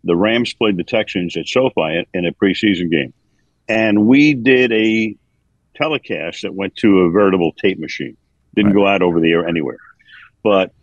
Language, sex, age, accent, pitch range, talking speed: English, male, 60-79, American, 95-115 Hz, 170 wpm